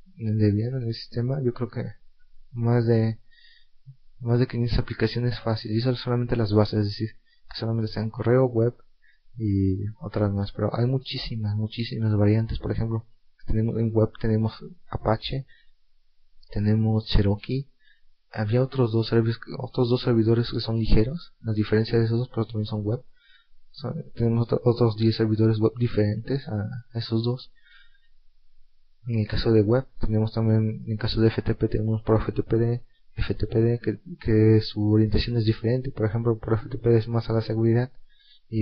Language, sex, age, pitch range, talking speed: Spanish, male, 30-49, 110-120 Hz, 165 wpm